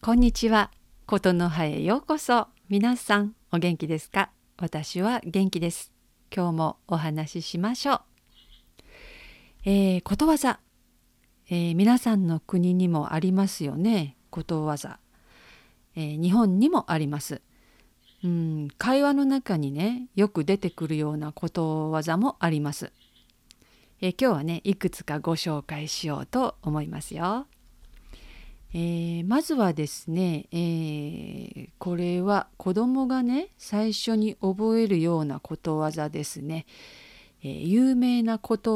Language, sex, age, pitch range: Japanese, female, 50-69, 160-220 Hz